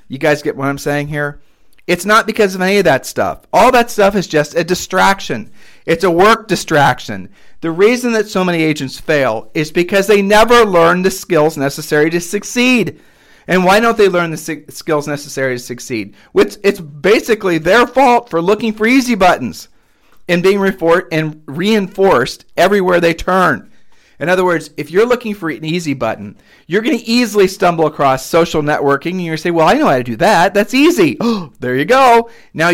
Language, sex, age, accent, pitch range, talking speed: English, male, 40-59, American, 145-200 Hz, 195 wpm